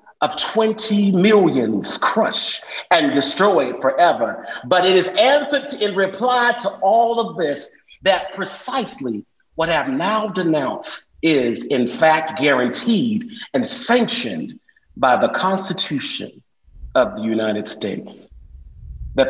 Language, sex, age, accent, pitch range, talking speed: English, male, 40-59, American, 135-205 Hz, 115 wpm